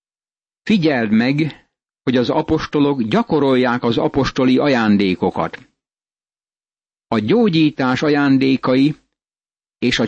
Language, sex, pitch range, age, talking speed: Hungarian, male, 130-155 Hz, 60-79, 85 wpm